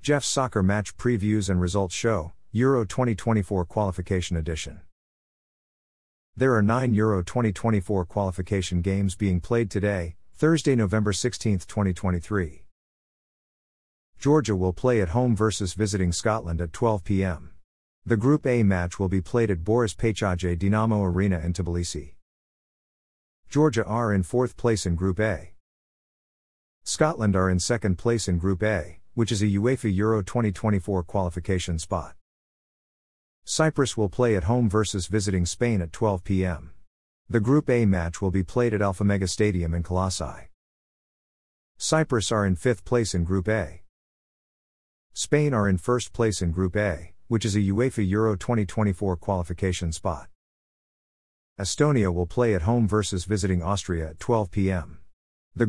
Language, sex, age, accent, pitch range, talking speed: English, male, 50-69, American, 90-110 Hz, 145 wpm